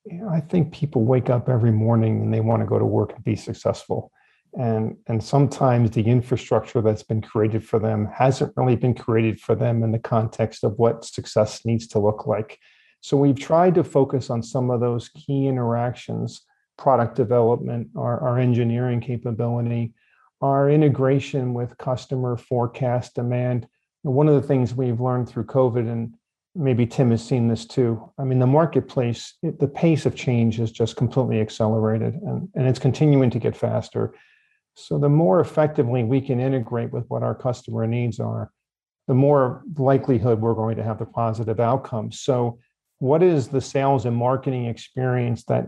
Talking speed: 175 wpm